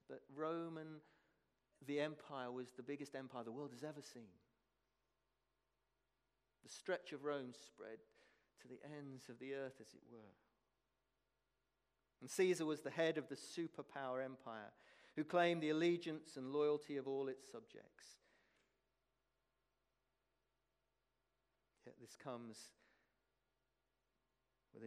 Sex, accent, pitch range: male, British, 115-150 Hz